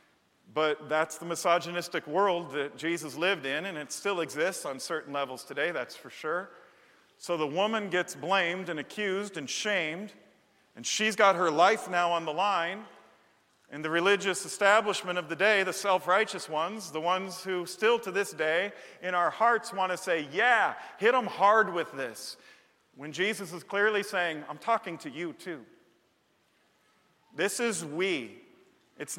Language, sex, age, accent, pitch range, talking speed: English, male, 40-59, American, 150-195 Hz, 165 wpm